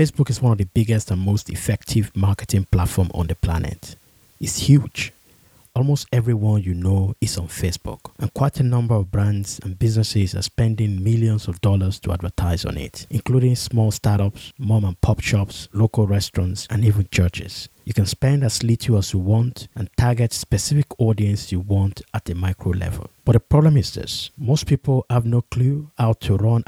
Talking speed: 185 wpm